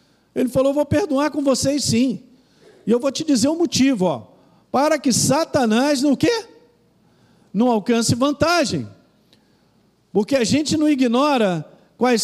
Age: 50-69